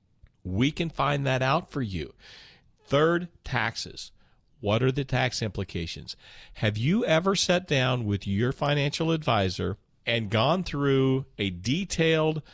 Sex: male